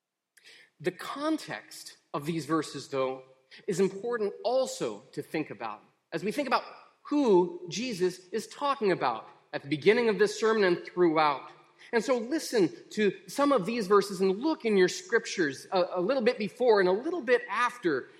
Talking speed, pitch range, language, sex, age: 170 wpm, 165-245 Hz, English, male, 30-49